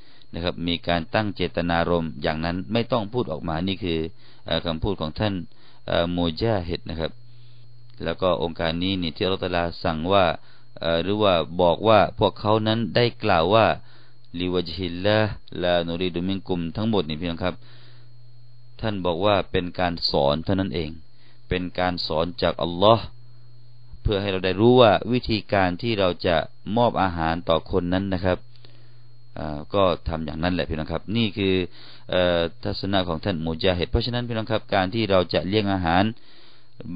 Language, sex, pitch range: Thai, male, 85-115 Hz